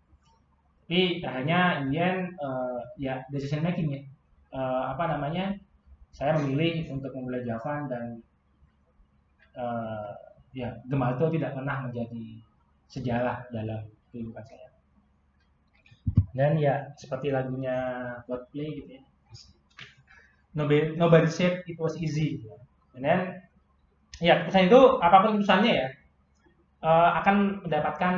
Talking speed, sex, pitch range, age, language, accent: 120 wpm, male, 120-170 Hz, 20-39, Indonesian, native